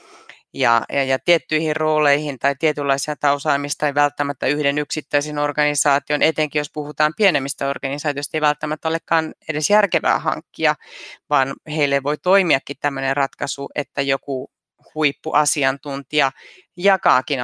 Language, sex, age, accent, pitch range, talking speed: Finnish, female, 30-49, native, 140-165 Hz, 115 wpm